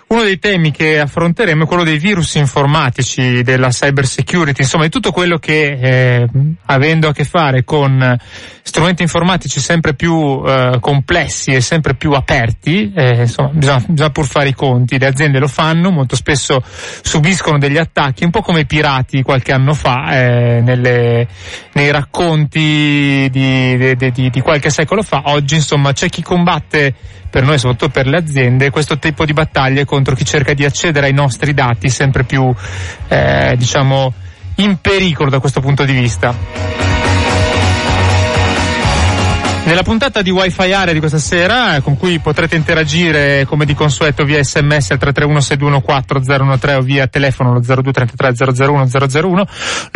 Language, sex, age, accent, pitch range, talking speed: Italian, male, 30-49, native, 130-160 Hz, 155 wpm